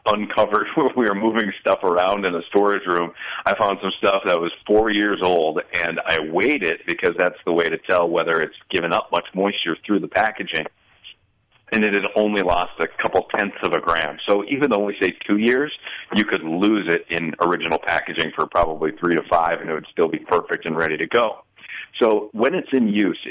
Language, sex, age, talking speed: English, male, 40-59, 215 wpm